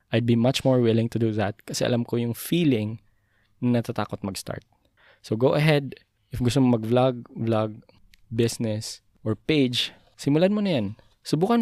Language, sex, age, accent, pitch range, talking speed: Filipino, male, 20-39, native, 105-130 Hz, 165 wpm